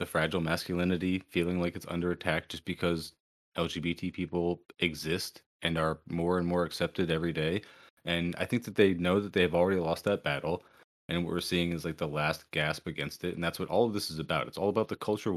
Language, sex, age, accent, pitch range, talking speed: English, male, 20-39, American, 85-110 Hz, 225 wpm